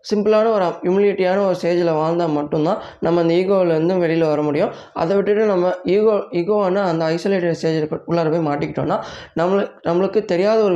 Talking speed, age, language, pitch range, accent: 160 wpm, 20-39, Tamil, 160-190 Hz, native